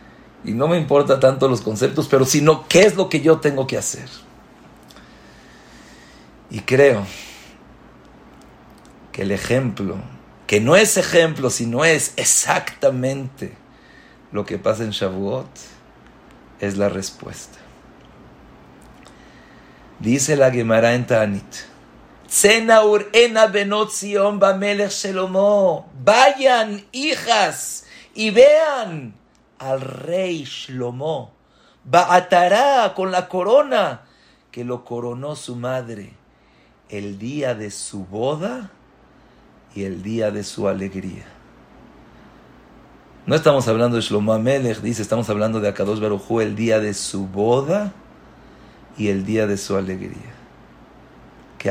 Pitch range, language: 105-175 Hz, English